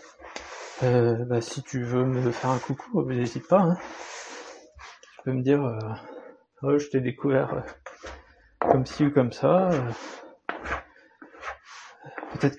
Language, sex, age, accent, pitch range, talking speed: French, male, 30-49, French, 125-145 Hz, 130 wpm